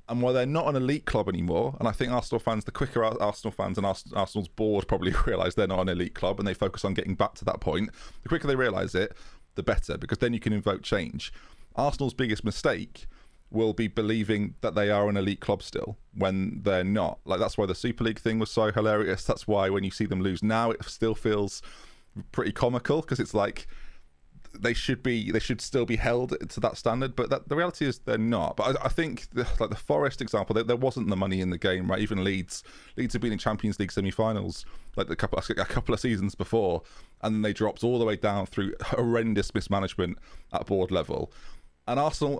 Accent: British